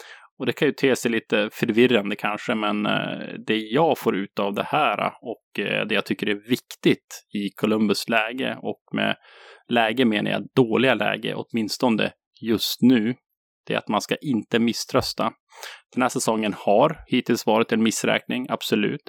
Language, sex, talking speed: English, male, 165 wpm